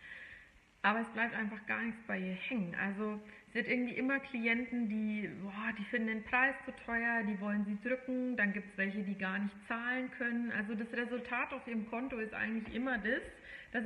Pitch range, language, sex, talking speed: 205-260 Hz, German, female, 205 wpm